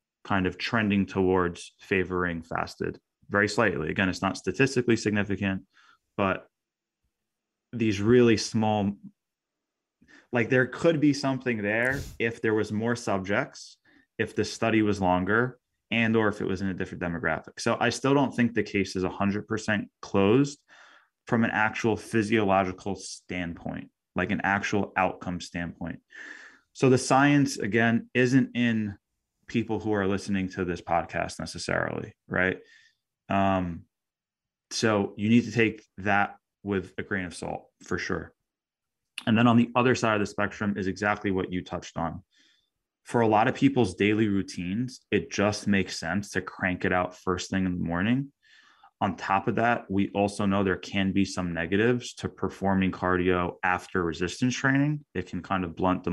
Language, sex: English, male